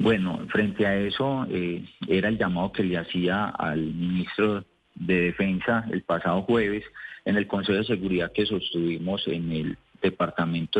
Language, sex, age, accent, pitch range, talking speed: Spanish, male, 40-59, Colombian, 90-110 Hz, 155 wpm